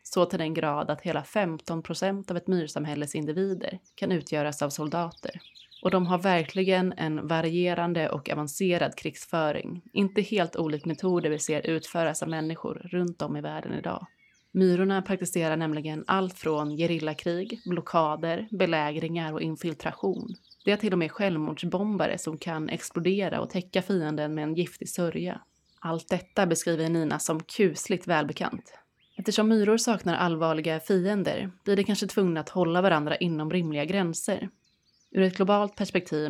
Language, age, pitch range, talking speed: Swedish, 30-49, 155-190 Hz, 150 wpm